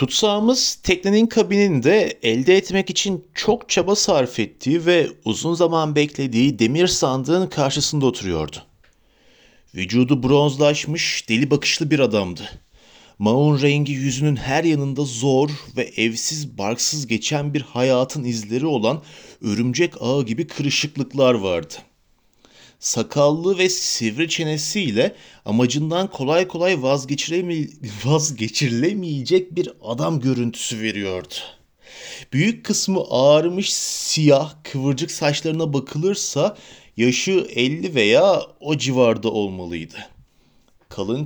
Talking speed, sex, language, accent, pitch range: 100 wpm, male, Turkish, native, 125-165 Hz